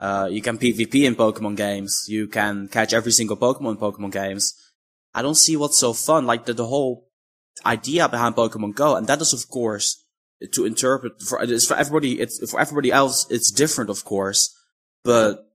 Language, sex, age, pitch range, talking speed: English, male, 10-29, 105-140 Hz, 195 wpm